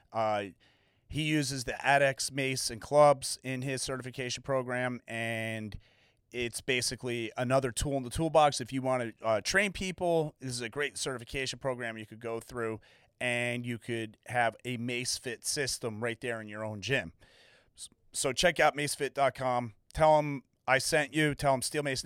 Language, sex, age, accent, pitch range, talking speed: English, male, 30-49, American, 115-135 Hz, 175 wpm